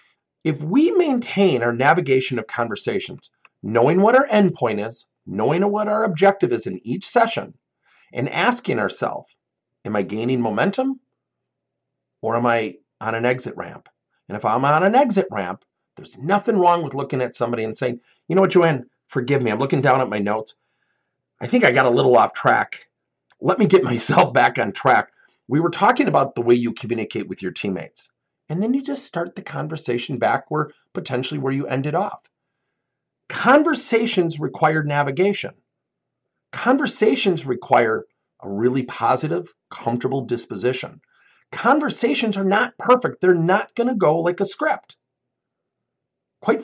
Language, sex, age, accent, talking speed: English, male, 40-59, American, 160 wpm